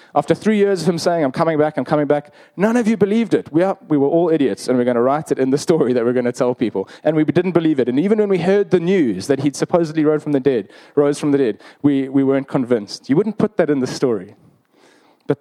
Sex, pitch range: male, 135-165 Hz